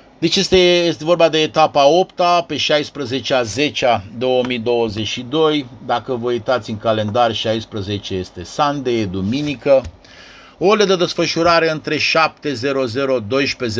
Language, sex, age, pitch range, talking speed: Romanian, male, 50-69, 110-145 Hz, 115 wpm